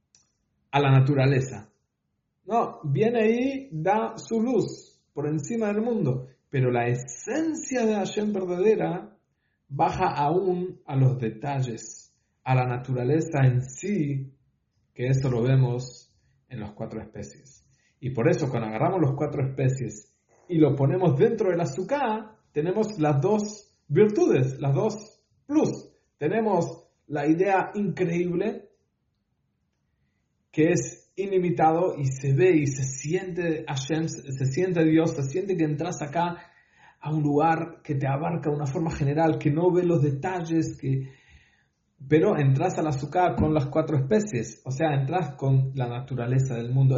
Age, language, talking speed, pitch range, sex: 50-69, English, 145 wpm, 130-180 Hz, male